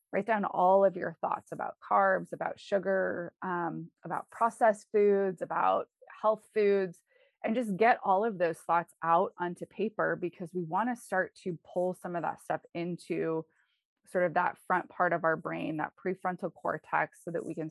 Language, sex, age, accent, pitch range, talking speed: English, female, 20-39, American, 175-210 Hz, 185 wpm